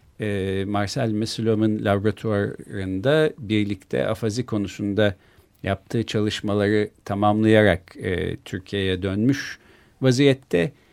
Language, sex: Turkish, male